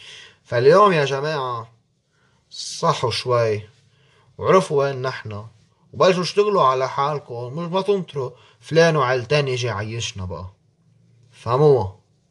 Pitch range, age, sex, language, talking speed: 115-150 Hz, 20-39, male, Arabic, 100 wpm